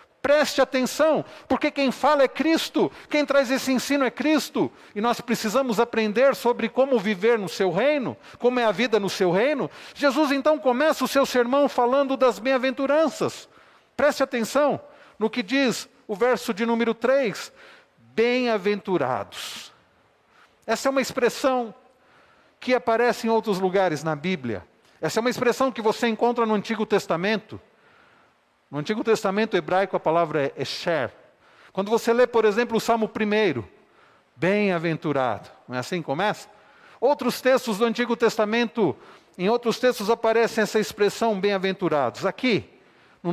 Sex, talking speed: male, 150 wpm